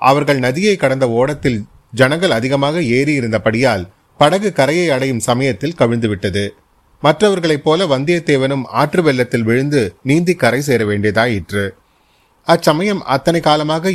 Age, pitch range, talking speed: 30-49, 115-150 Hz, 110 wpm